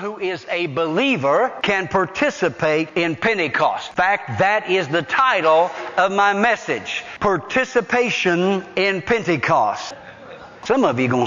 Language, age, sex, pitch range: English, 60-79, male, 130-175 Hz